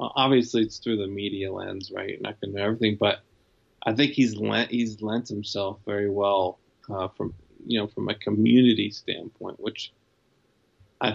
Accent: American